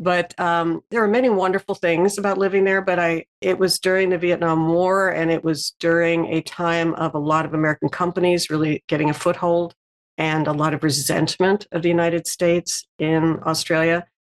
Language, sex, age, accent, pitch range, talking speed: English, female, 50-69, American, 155-180 Hz, 190 wpm